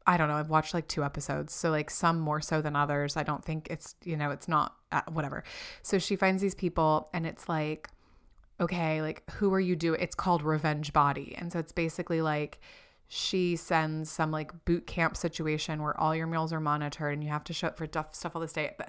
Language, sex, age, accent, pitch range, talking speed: English, female, 20-39, American, 150-170 Hz, 225 wpm